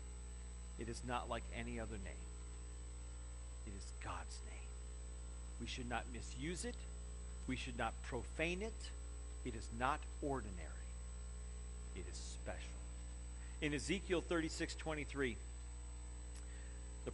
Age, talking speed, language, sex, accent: 40-59, 115 wpm, English, male, American